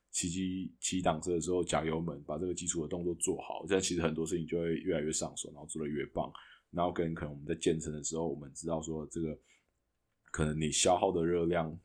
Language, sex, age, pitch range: Chinese, male, 20-39, 75-85 Hz